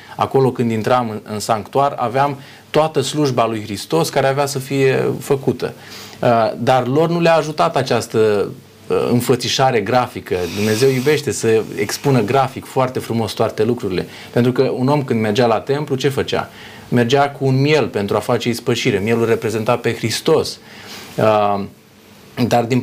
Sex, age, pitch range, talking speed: male, 30-49, 115-140 Hz, 145 wpm